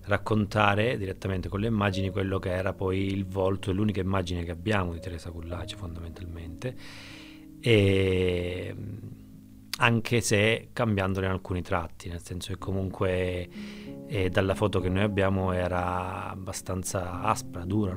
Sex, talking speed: male, 135 wpm